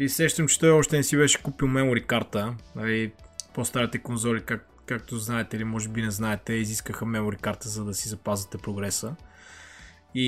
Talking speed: 185 wpm